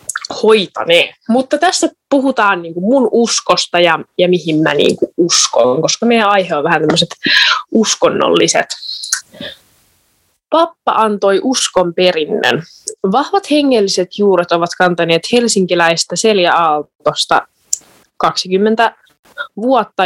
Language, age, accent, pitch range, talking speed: Finnish, 20-39, native, 175-230 Hz, 100 wpm